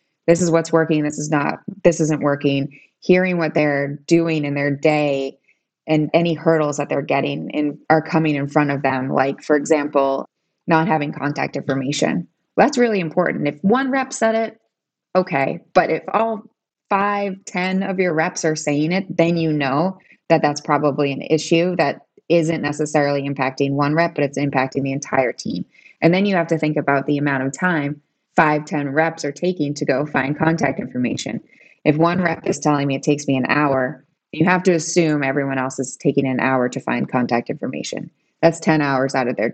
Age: 20-39